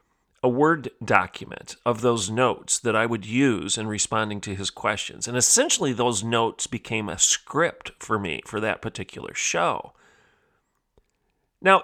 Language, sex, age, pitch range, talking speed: English, male, 40-59, 110-155 Hz, 145 wpm